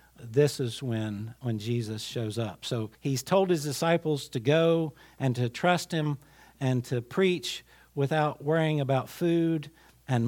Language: English